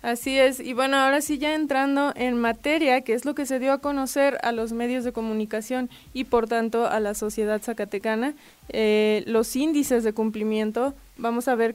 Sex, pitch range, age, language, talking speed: female, 225-260 Hz, 20-39, Spanish, 195 wpm